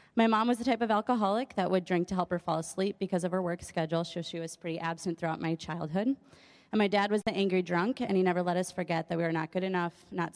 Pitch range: 170-200 Hz